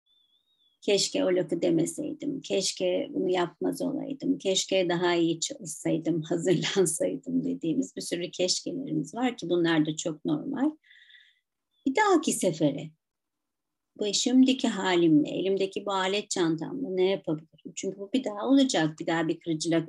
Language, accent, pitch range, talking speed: Turkish, native, 180-270 Hz, 135 wpm